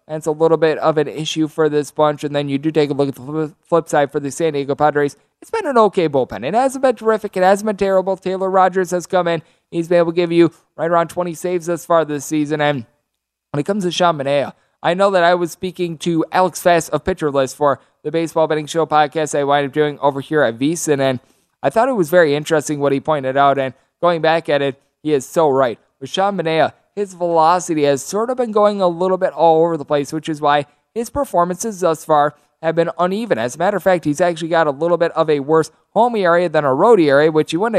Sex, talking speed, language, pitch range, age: male, 260 wpm, English, 145-185 Hz, 20-39